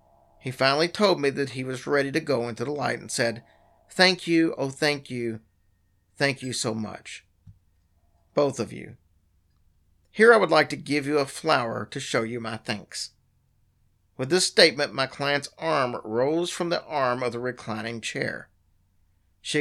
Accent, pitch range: American, 95-140 Hz